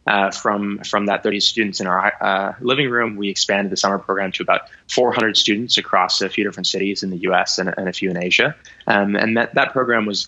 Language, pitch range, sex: English, 95-105 Hz, male